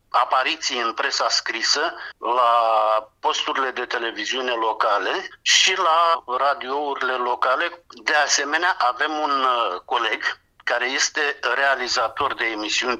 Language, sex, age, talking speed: English, male, 50-69, 105 wpm